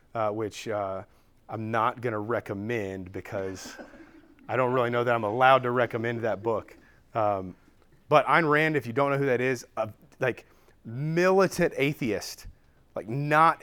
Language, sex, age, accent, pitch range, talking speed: English, male, 30-49, American, 115-140 Hz, 160 wpm